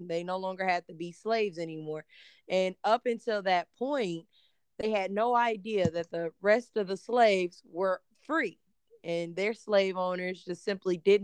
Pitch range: 170-205 Hz